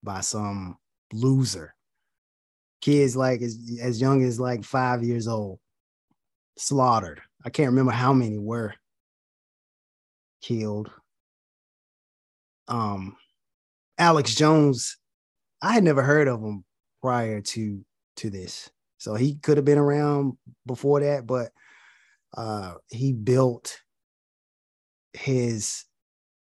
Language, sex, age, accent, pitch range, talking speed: English, male, 20-39, American, 110-130 Hz, 105 wpm